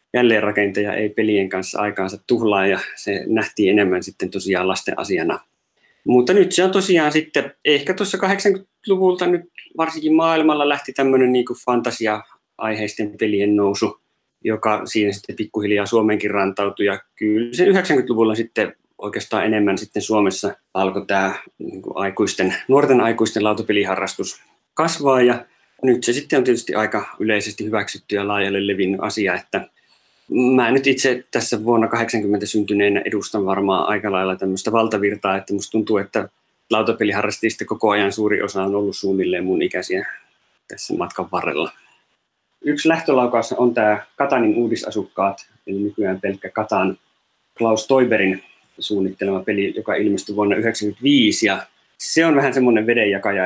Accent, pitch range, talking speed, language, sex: native, 100-125 Hz, 135 wpm, Finnish, male